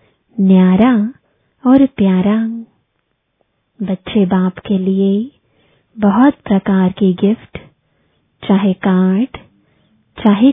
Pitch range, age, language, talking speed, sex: 190-225 Hz, 20-39, English, 80 wpm, female